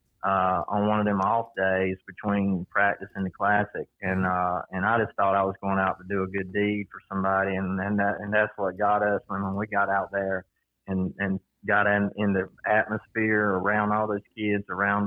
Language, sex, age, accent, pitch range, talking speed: English, male, 30-49, American, 95-110 Hz, 215 wpm